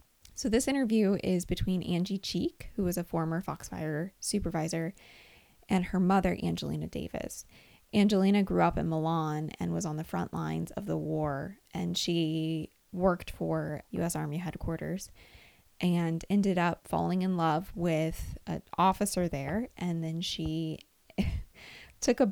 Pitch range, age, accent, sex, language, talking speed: 155-190 Hz, 20-39, American, female, English, 145 wpm